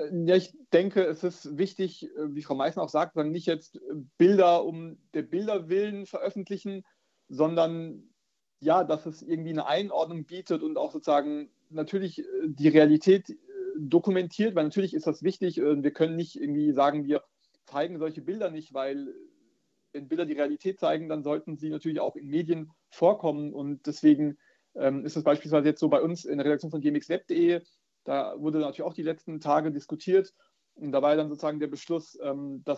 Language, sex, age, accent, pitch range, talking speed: German, male, 40-59, German, 150-180 Hz, 170 wpm